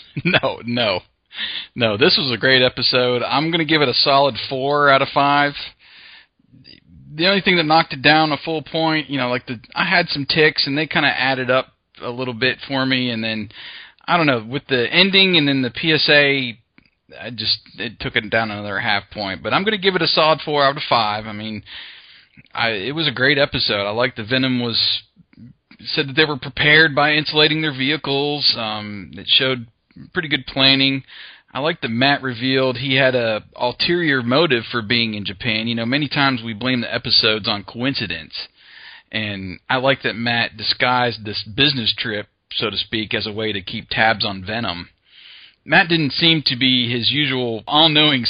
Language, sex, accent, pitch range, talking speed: English, male, American, 110-145 Hz, 200 wpm